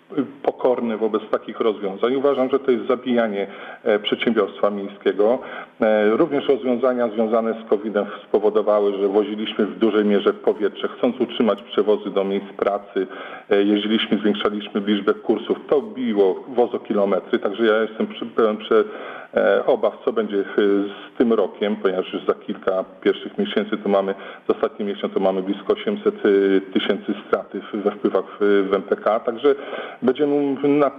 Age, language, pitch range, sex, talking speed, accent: 40-59, Polish, 105-145 Hz, male, 140 wpm, native